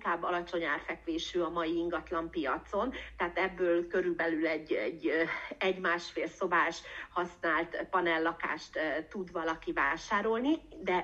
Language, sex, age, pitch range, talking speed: Hungarian, female, 40-59, 165-205 Hz, 115 wpm